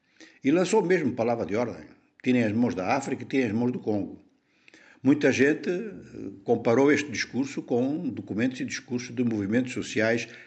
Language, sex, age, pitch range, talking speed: Portuguese, male, 60-79, 100-130 Hz, 165 wpm